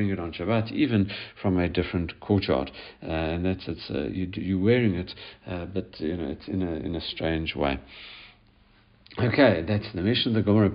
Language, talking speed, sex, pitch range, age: English, 180 wpm, male, 90-110 Hz, 50-69